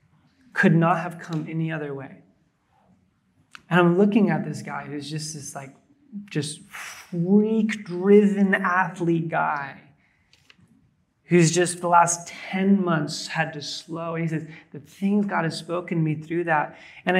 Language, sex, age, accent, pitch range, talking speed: English, male, 30-49, American, 155-190 Hz, 150 wpm